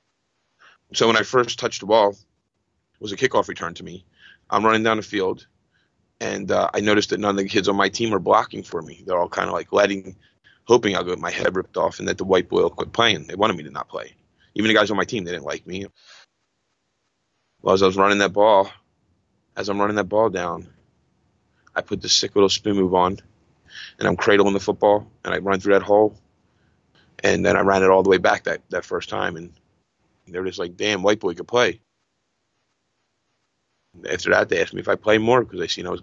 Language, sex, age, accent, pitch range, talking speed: English, male, 30-49, American, 95-105 Hz, 235 wpm